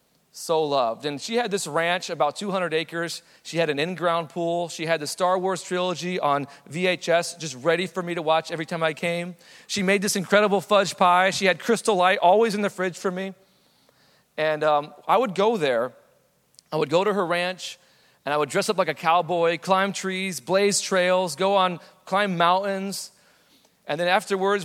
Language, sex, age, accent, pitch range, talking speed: English, male, 40-59, American, 160-195 Hz, 195 wpm